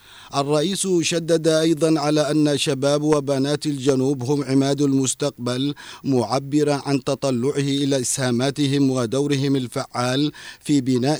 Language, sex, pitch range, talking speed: Arabic, male, 130-145 Hz, 105 wpm